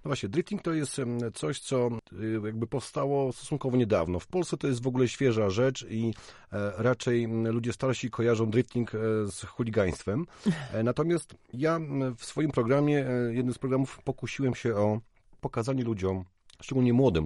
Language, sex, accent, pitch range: Polish, male, native, 105-135 Hz